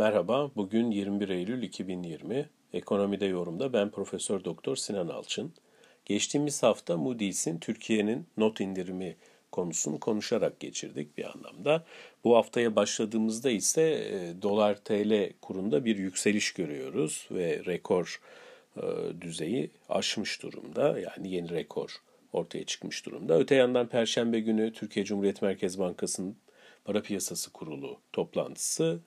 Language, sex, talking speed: Turkish, male, 115 wpm